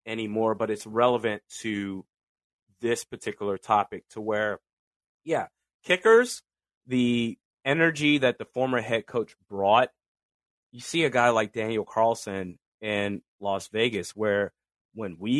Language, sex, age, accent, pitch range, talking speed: English, male, 30-49, American, 110-140 Hz, 130 wpm